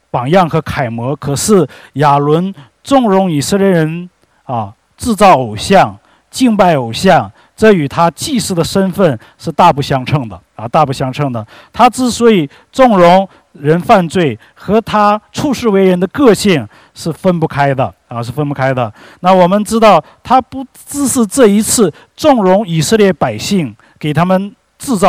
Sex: male